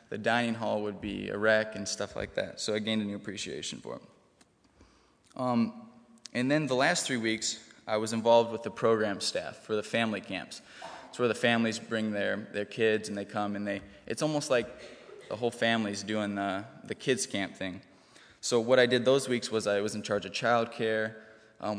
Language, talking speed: English, 210 wpm